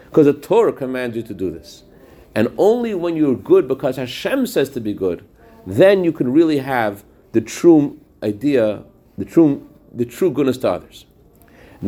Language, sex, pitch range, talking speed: English, male, 125-160 Hz, 175 wpm